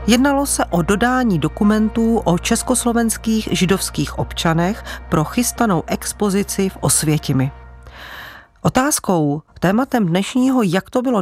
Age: 40-59